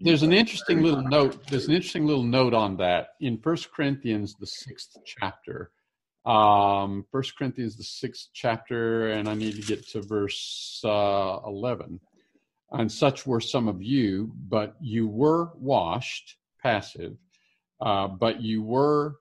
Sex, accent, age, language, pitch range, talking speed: male, American, 50-69, English, 110-145 Hz, 150 wpm